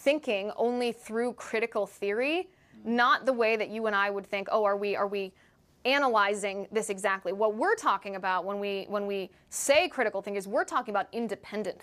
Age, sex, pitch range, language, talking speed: 20-39, female, 200-245 Hz, English, 195 wpm